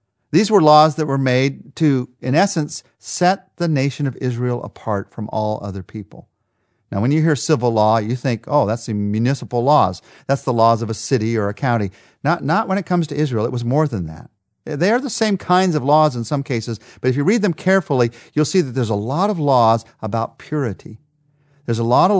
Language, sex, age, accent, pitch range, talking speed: English, male, 50-69, American, 120-160 Hz, 225 wpm